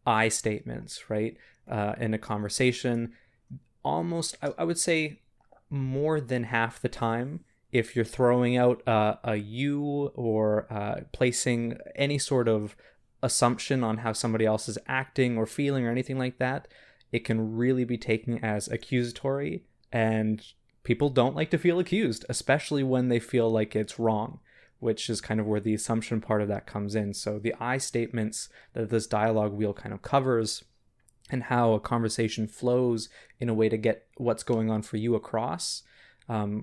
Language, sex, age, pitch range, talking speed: English, male, 20-39, 110-125 Hz, 170 wpm